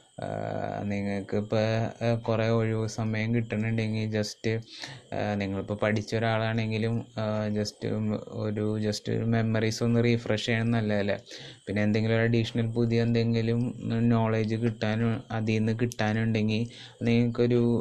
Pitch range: 105-115 Hz